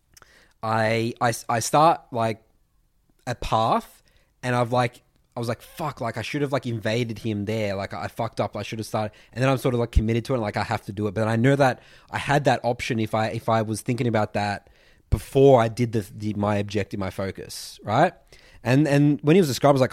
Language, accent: English, Australian